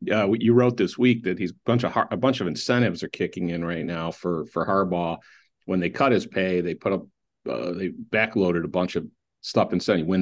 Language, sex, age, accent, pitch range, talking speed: English, male, 50-69, American, 90-125 Hz, 255 wpm